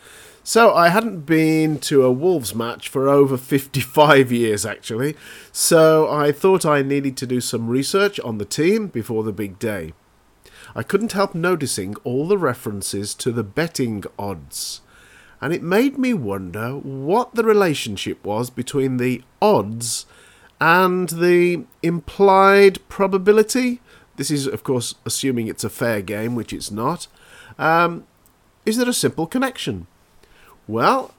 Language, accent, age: English, British, 40-59